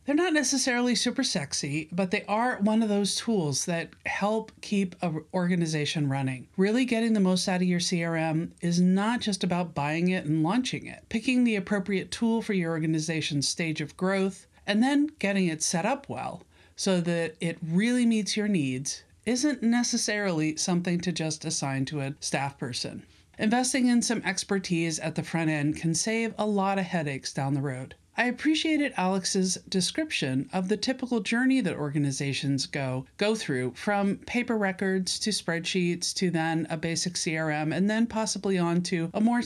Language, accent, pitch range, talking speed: English, American, 155-215 Hz, 175 wpm